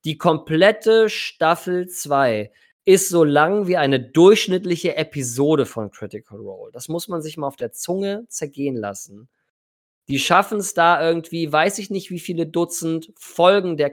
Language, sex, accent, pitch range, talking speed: German, male, German, 150-200 Hz, 160 wpm